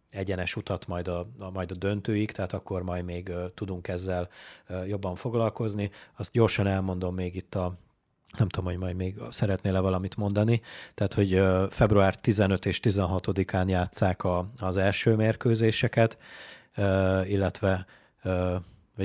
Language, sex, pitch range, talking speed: Hungarian, male, 90-105 Hz, 140 wpm